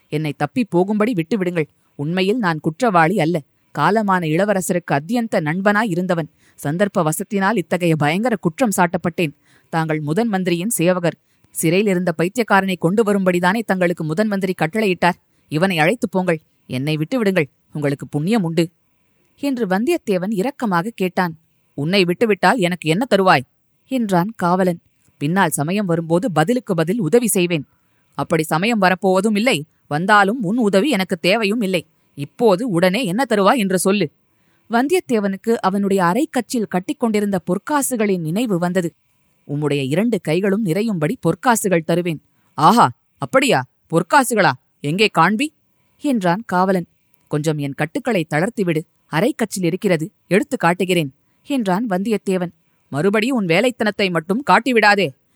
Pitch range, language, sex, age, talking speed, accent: 165-210 Hz, Tamil, female, 20-39, 115 wpm, native